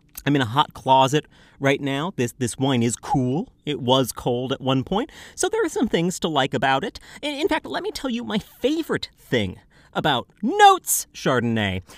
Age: 40-59